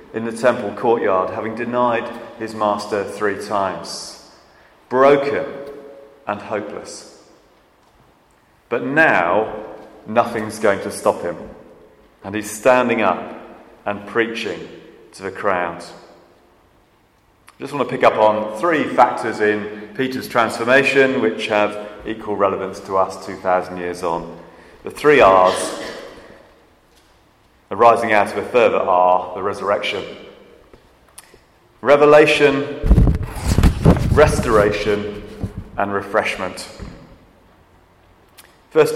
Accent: British